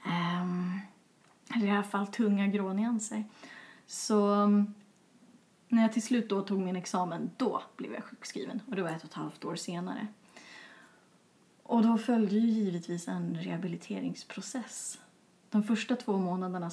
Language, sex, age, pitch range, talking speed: Swedish, female, 30-49, 185-230 Hz, 150 wpm